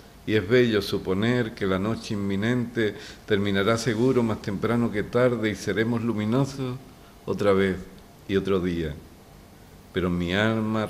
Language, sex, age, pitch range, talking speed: Spanish, male, 50-69, 90-110 Hz, 140 wpm